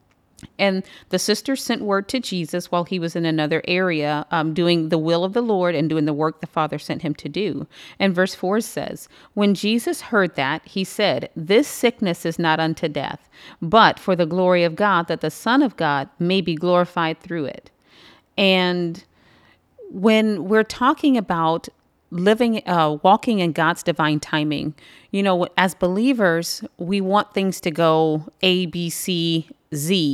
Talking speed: 175 wpm